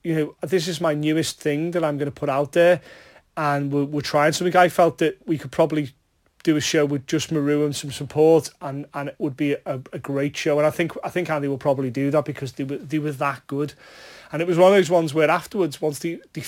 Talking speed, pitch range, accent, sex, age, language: 260 wpm, 145-175 Hz, British, male, 30-49, English